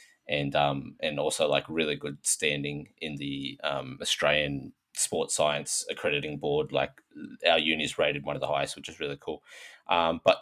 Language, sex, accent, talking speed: English, male, Australian, 180 wpm